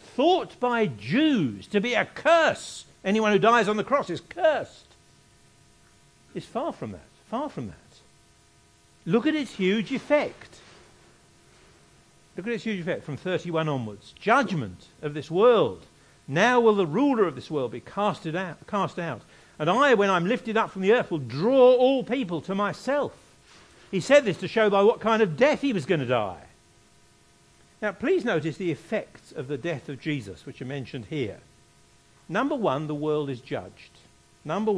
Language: English